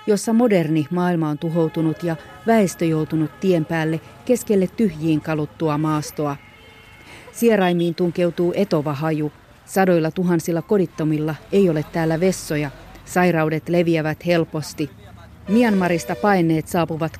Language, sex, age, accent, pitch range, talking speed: Finnish, female, 40-59, native, 155-190 Hz, 110 wpm